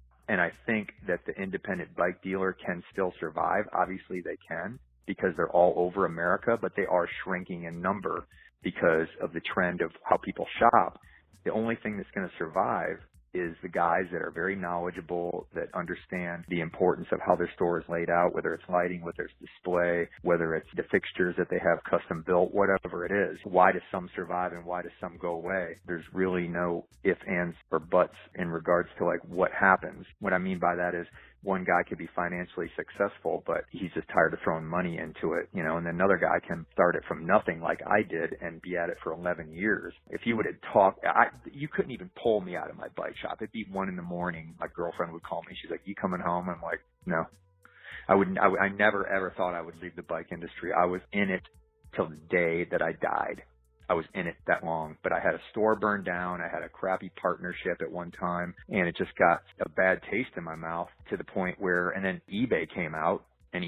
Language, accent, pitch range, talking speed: English, American, 85-95 Hz, 225 wpm